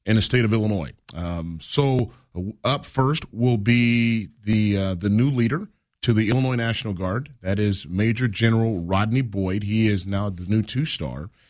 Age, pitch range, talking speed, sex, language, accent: 30-49, 95-125 Hz, 175 wpm, male, English, American